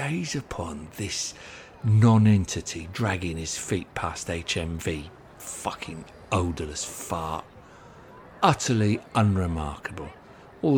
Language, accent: English, British